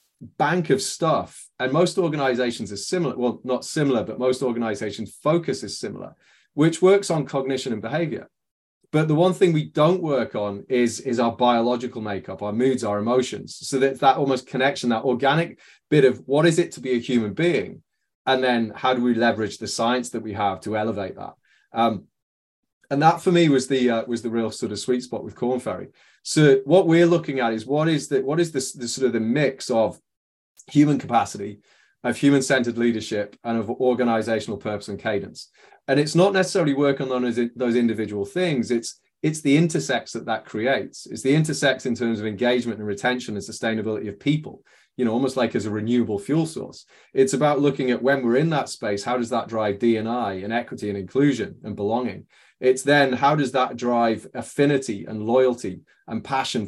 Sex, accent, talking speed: male, British, 200 wpm